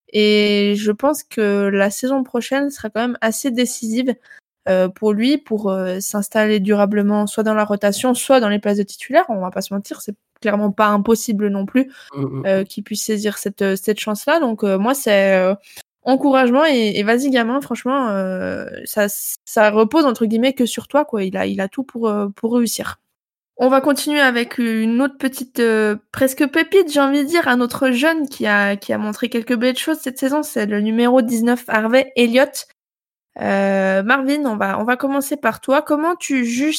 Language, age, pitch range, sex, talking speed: French, 20-39, 210-265 Hz, female, 195 wpm